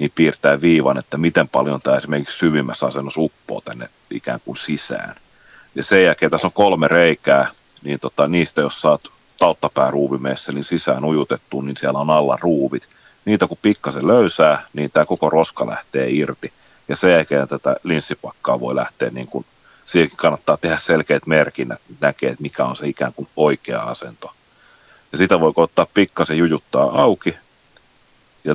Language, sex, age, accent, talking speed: Finnish, male, 40-59, native, 160 wpm